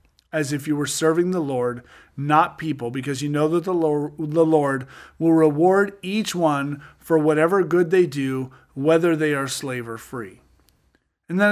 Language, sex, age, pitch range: English, male, 40-59, 145-175 Hz